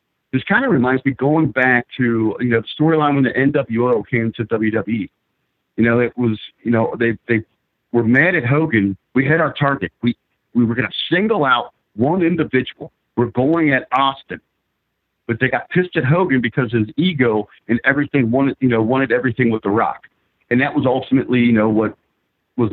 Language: English